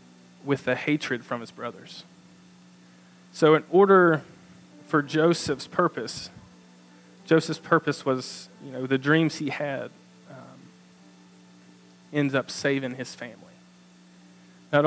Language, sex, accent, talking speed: English, male, American, 115 wpm